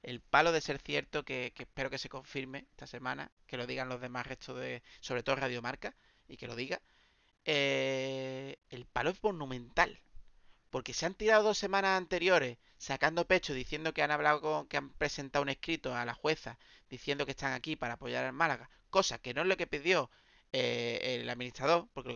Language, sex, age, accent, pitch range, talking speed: Spanish, male, 30-49, Spanish, 130-175 Hz, 205 wpm